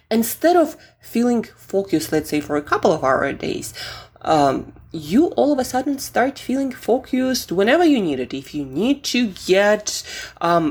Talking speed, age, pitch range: 175 wpm, 20-39, 150-235 Hz